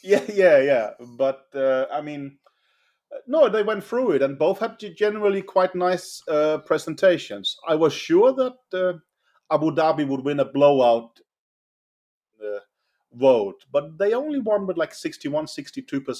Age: 40-59